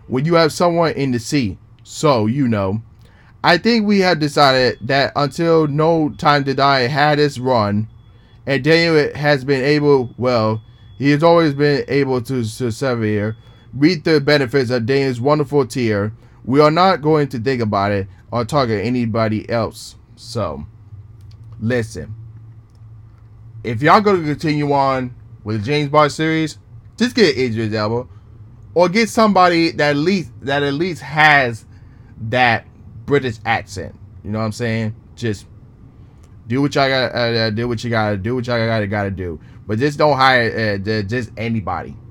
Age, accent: 20-39, American